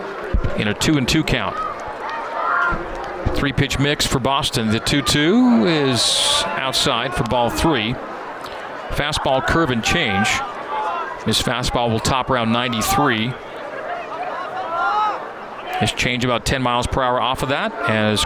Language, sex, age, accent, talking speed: English, male, 40-59, American, 135 wpm